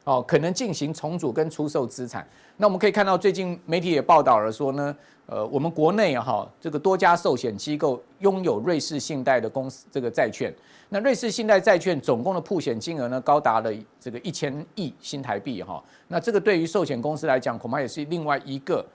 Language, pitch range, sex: Chinese, 140-200 Hz, male